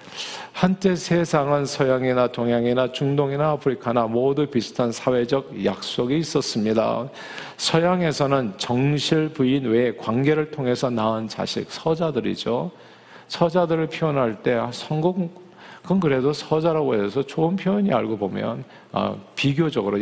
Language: Korean